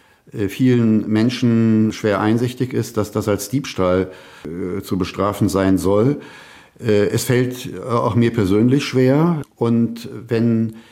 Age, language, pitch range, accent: 50-69, German, 105-130 Hz, German